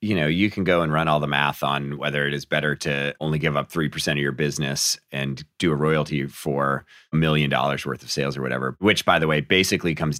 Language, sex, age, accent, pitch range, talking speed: English, male, 30-49, American, 75-90 Hz, 245 wpm